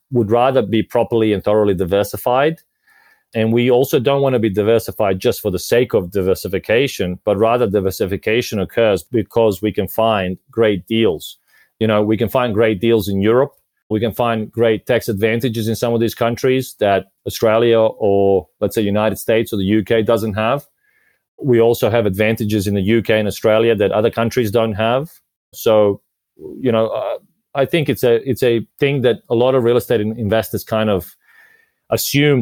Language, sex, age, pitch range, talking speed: English, male, 30-49, 105-120 Hz, 180 wpm